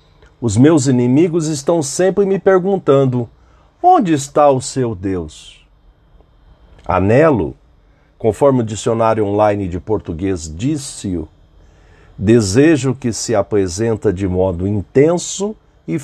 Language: Portuguese